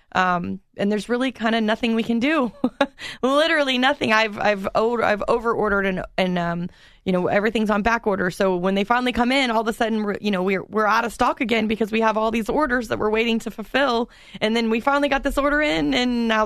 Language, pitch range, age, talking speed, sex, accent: English, 200-240 Hz, 20-39, 235 wpm, female, American